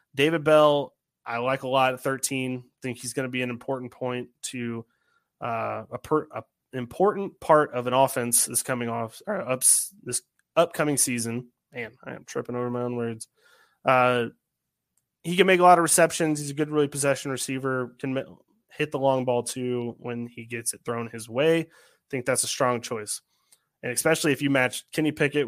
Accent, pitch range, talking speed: American, 125-145 Hz, 195 wpm